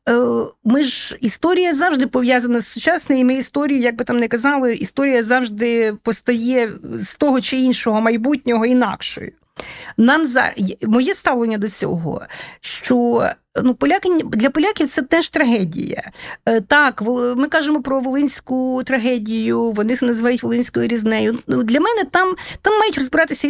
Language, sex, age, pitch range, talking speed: Ukrainian, female, 40-59, 225-280 Hz, 135 wpm